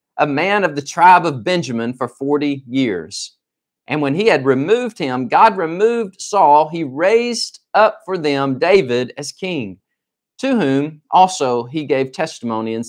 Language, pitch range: English, 135-195 Hz